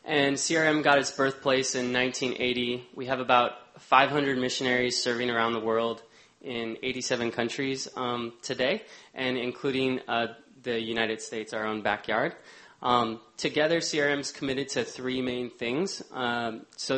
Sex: male